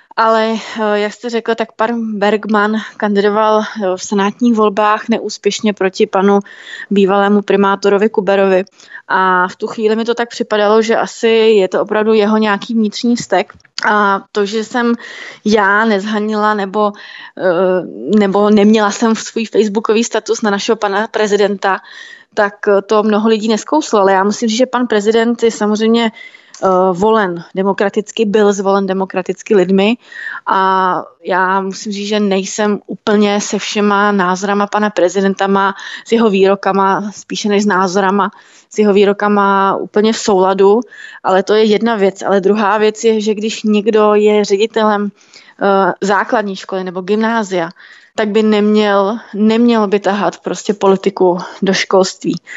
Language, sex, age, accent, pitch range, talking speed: Czech, female, 20-39, native, 195-220 Hz, 145 wpm